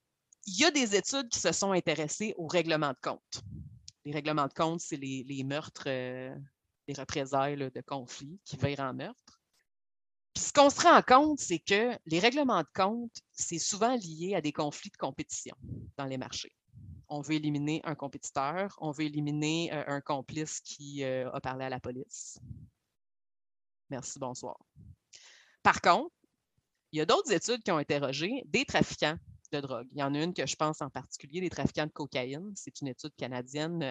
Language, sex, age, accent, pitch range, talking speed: French, female, 30-49, Canadian, 140-175 Hz, 180 wpm